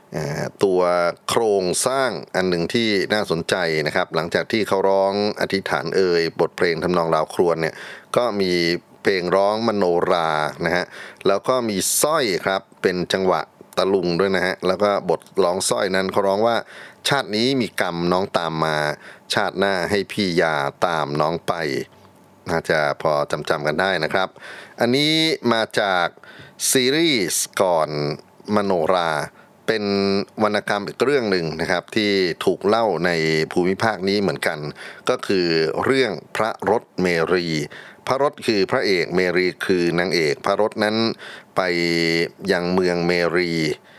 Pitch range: 85-100 Hz